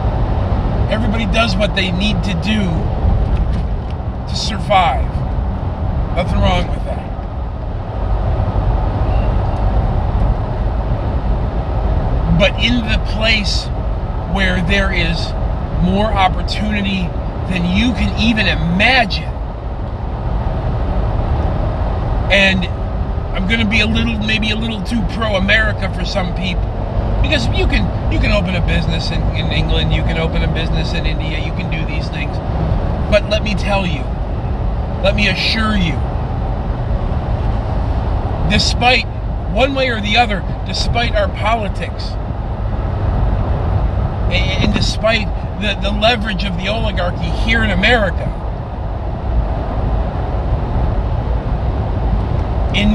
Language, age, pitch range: English, 40-59, 90-105 Hz